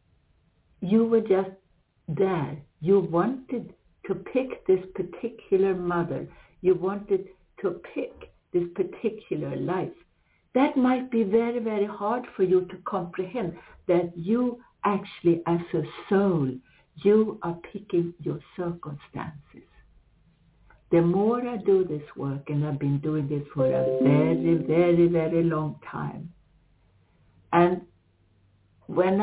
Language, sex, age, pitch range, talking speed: English, female, 60-79, 145-205 Hz, 120 wpm